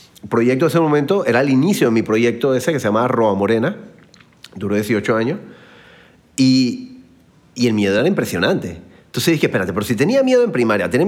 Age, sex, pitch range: 30-49, male, 115-180 Hz